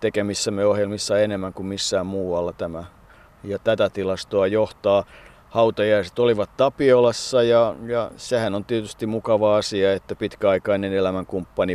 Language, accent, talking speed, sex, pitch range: Finnish, native, 115 wpm, male, 90-105 Hz